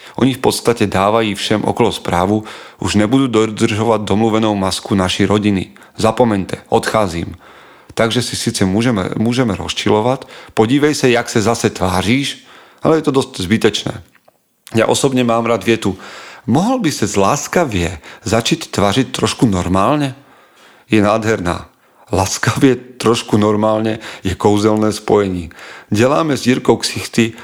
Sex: male